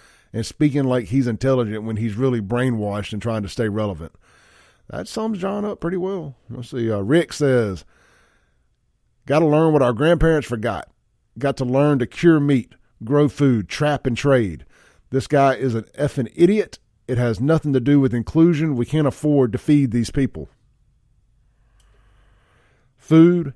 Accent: American